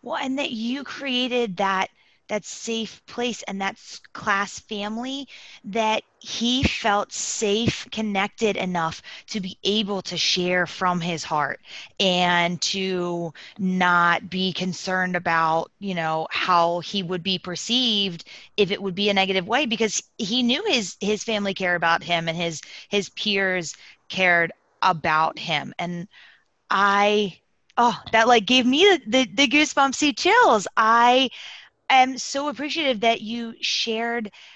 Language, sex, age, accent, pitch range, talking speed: English, female, 20-39, American, 185-240 Hz, 140 wpm